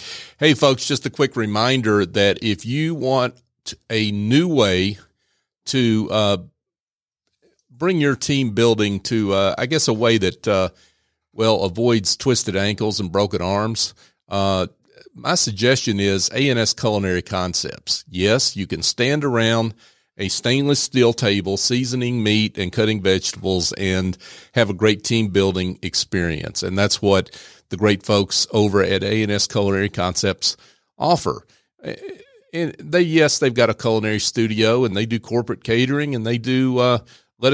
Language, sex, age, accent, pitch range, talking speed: English, male, 40-59, American, 100-125 Hz, 145 wpm